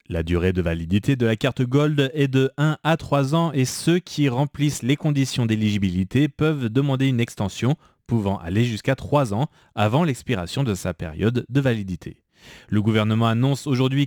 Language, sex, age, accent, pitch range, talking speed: French, male, 30-49, French, 105-140 Hz, 175 wpm